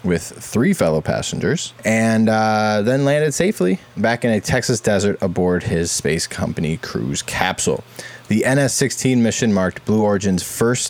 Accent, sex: American, male